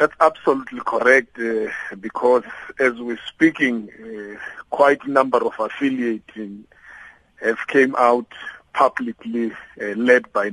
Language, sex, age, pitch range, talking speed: English, male, 50-69, 110-130 Hz, 120 wpm